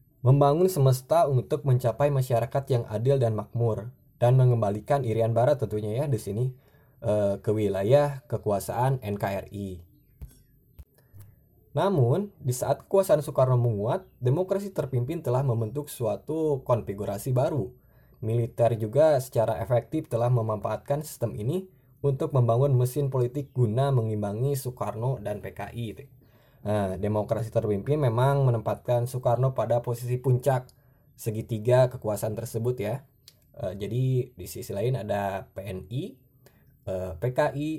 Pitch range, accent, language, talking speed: 110-140 Hz, native, Indonesian, 115 wpm